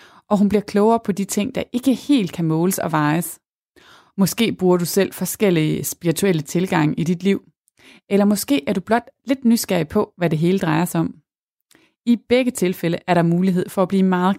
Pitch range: 165-215 Hz